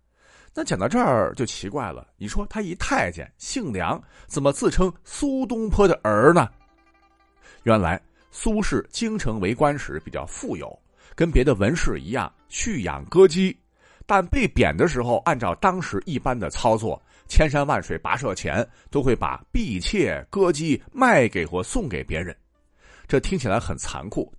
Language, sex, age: Chinese, male, 50-69